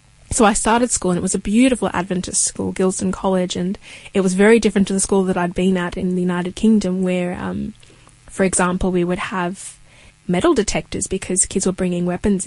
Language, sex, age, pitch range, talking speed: English, female, 20-39, 185-220 Hz, 205 wpm